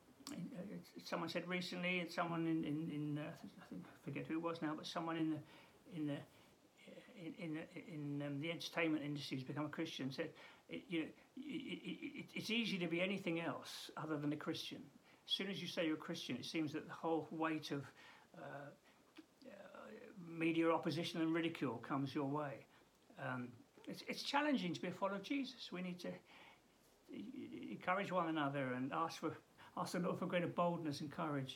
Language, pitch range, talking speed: English, 155-210 Hz, 200 wpm